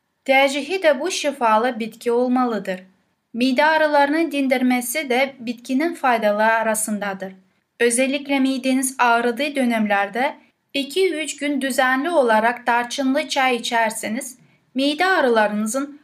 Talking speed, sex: 95 wpm, female